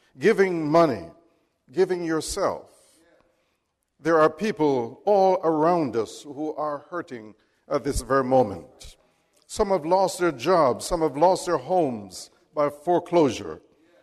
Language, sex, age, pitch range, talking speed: English, male, 60-79, 135-170 Hz, 125 wpm